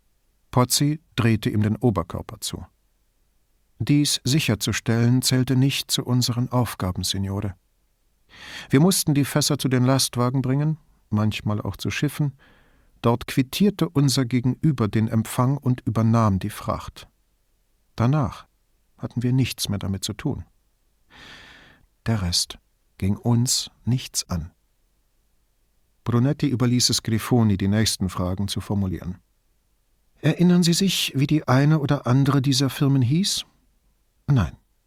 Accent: German